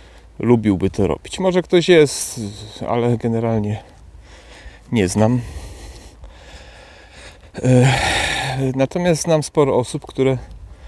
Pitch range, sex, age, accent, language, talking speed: 95-130 Hz, male, 40-59, native, Polish, 85 wpm